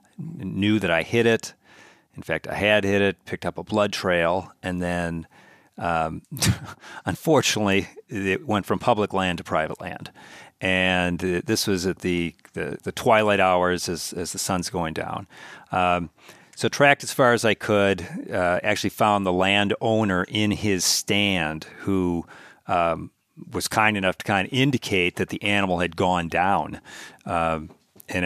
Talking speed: 170 wpm